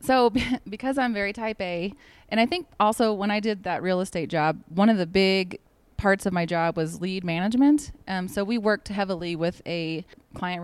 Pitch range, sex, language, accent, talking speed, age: 165-195 Hz, female, English, American, 205 wpm, 30-49